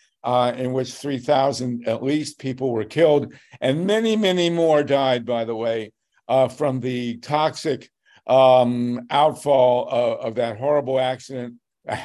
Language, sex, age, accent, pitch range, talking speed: English, male, 50-69, American, 120-140 Hz, 145 wpm